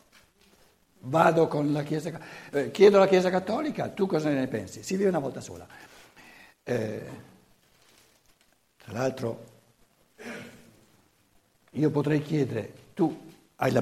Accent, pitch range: native, 145-210 Hz